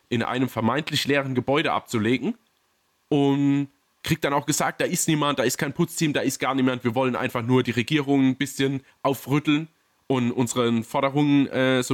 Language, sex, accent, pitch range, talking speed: German, male, German, 120-145 Hz, 180 wpm